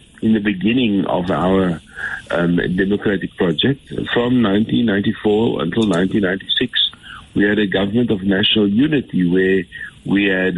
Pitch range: 95-120 Hz